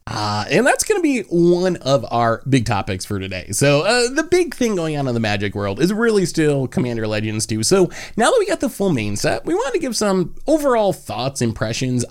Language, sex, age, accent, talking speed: English, male, 30-49, American, 230 wpm